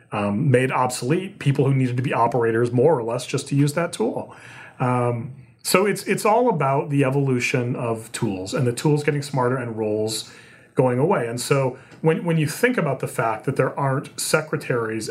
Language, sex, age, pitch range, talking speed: English, male, 30-49, 120-150 Hz, 195 wpm